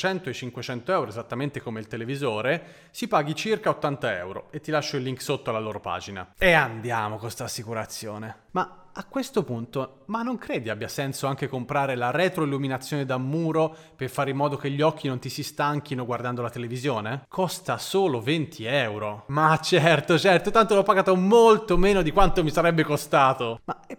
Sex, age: male, 30-49